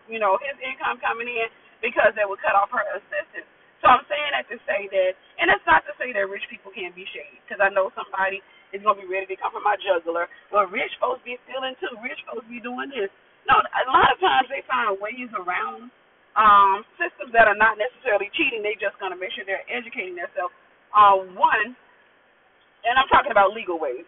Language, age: English, 30-49